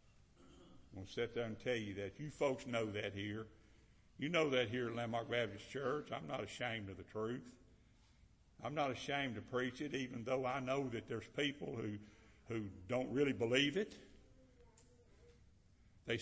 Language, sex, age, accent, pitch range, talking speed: English, male, 60-79, American, 110-145 Hz, 180 wpm